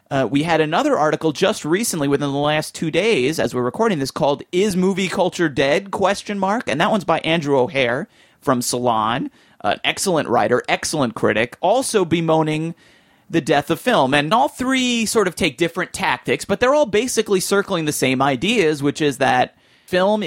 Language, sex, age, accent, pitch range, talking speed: English, male, 30-49, American, 135-170 Hz, 185 wpm